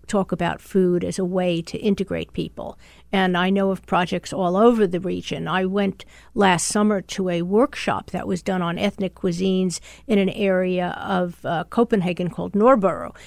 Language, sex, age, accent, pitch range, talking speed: English, female, 50-69, American, 185-215 Hz, 175 wpm